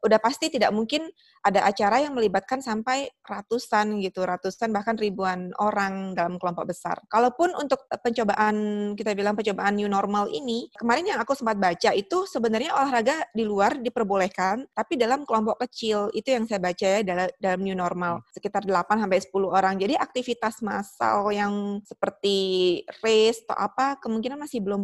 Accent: native